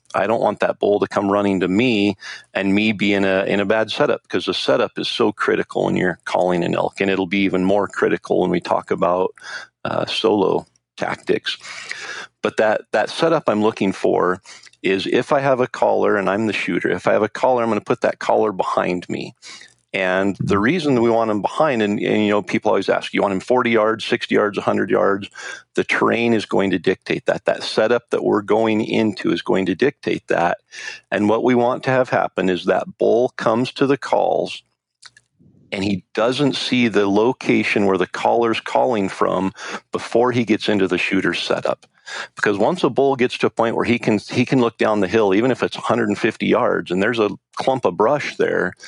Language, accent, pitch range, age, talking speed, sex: English, American, 100-120 Hz, 40-59, 215 wpm, male